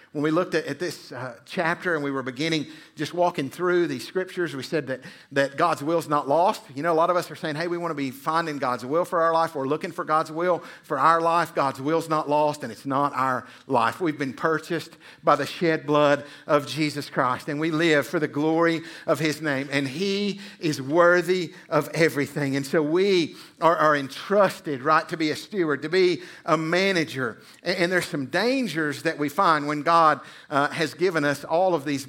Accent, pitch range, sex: American, 150-180 Hz, male